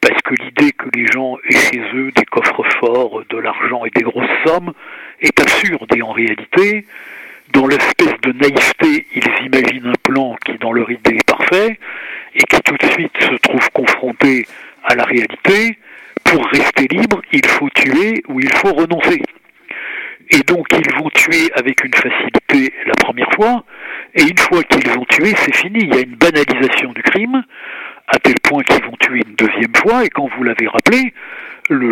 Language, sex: French, male